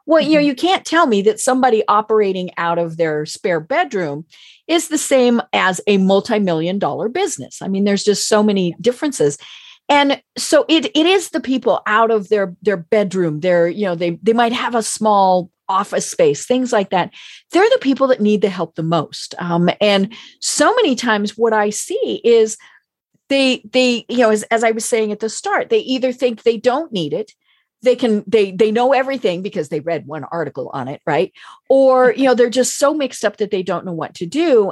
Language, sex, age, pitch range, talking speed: English, female, 40-59, 200-275 Hz, 210 wpm